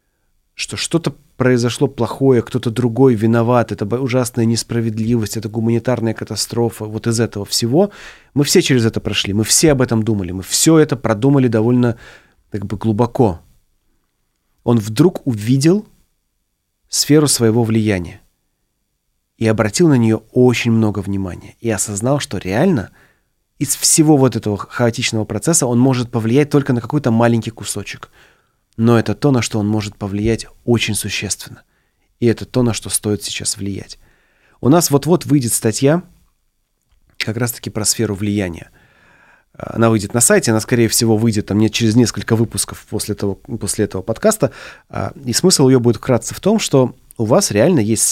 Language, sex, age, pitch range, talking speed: Russian, male, 30-49, 110-130 Hz, 155 wpm